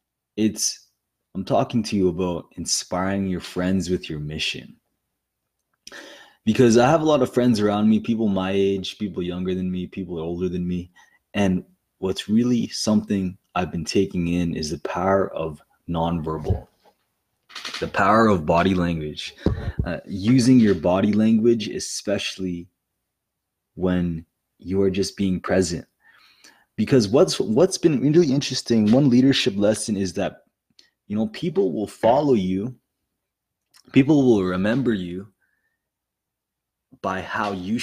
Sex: male